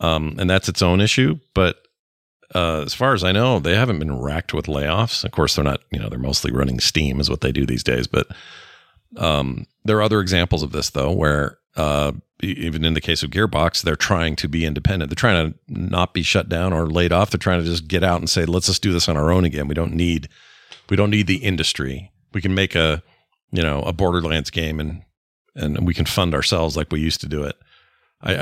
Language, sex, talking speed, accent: English, male, 240 wpm, American